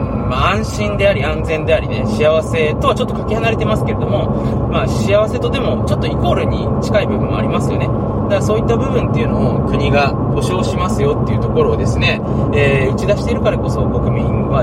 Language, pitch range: Japanese, 110-120 Hz